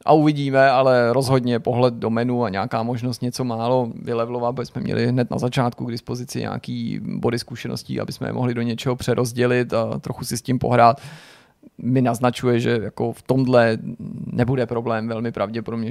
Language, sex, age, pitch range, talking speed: Czech, male, 30-49, 120-130 Hz, 175 wpm